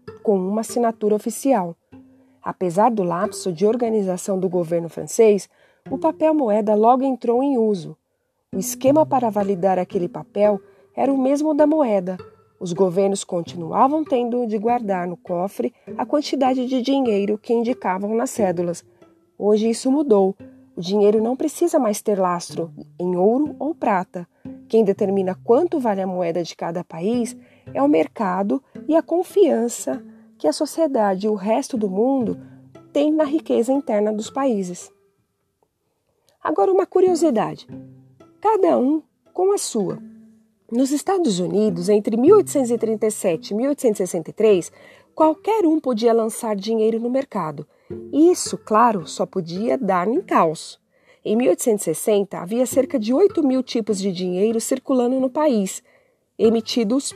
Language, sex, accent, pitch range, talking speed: Portuguese, female, Brazilian, 195-270 Hz, 140 wpm